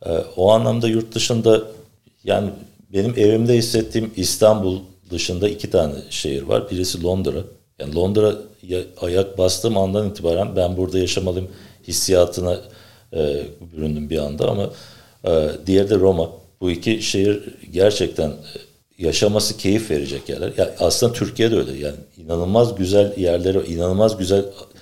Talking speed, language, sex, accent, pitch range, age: 135 wpm, Turkish, male, native, 90-105 Hz, 50-69